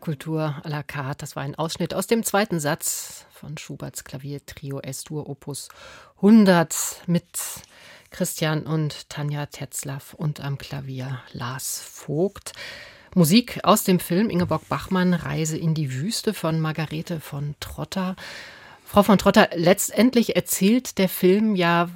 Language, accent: German, German